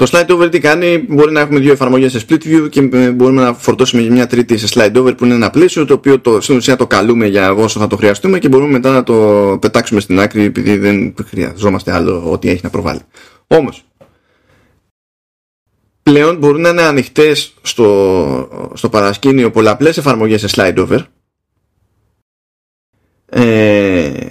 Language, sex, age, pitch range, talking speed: Greek, male, 20-39, 105-140 Hz, 170 wpm